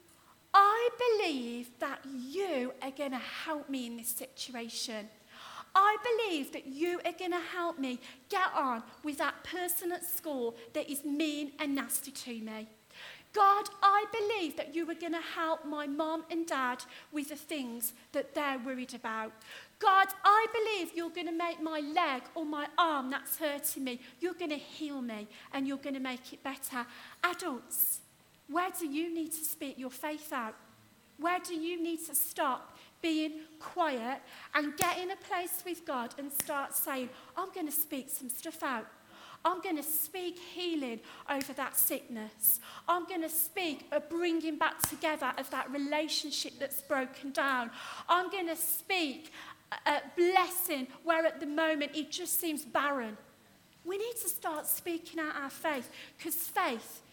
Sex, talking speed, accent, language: female, 165 wpm, British, English